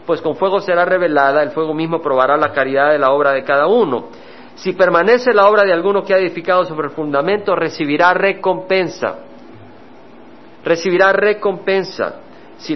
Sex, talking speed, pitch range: male, 160 wpm, 140-190 Hz